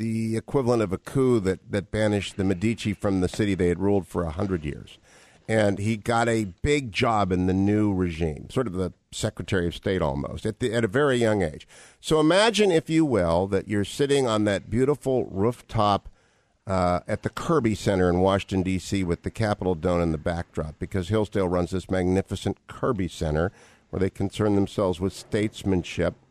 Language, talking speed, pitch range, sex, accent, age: English, 190 wpm, 95-120 Hz, male, American, 50-69